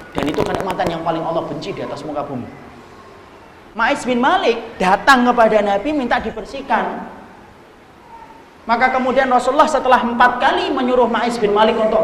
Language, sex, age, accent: Indonesian, male, 40-59, native